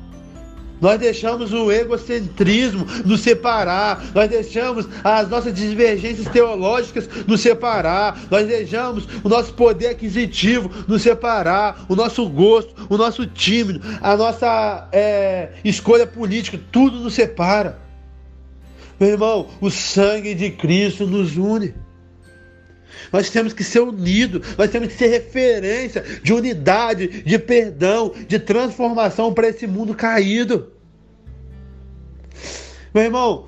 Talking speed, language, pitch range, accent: 115 wpm, Portuguese, 185-230 Hz, Brazilian